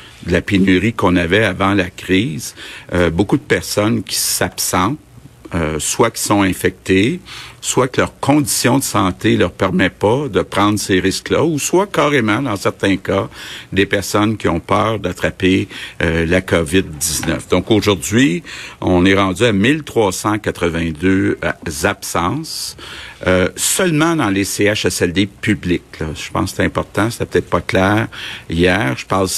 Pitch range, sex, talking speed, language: 90-110 Hz, male, 150 wpm, French